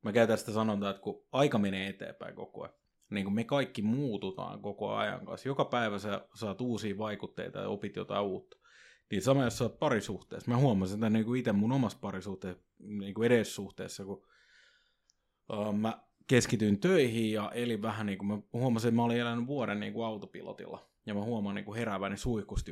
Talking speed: 170 wpm